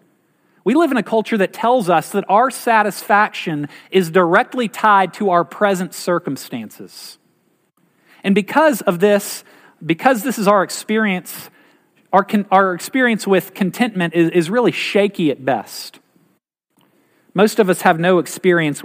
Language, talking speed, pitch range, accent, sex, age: English, 140 wpm, 150-205 Hz, American, male, 40-59